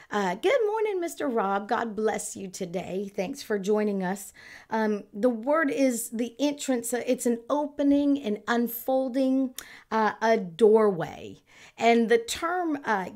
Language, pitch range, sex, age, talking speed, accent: English, 205-255 Hz, female, 40-59, 140 wpm, American